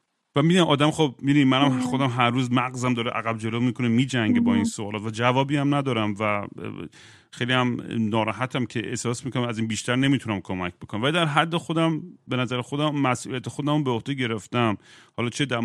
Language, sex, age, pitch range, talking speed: Persian, male, 40-59, 110-140 Hz, 185 wpm